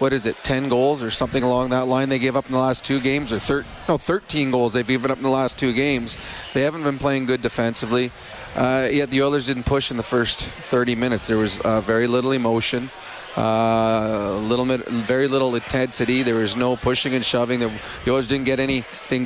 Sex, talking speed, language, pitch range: male, 225 wpm, English, 125-145 Hz